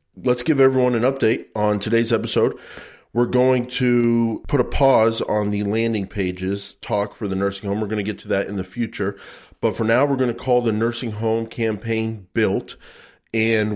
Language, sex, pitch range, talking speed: English, male, 100-120 Hz, 195 wpm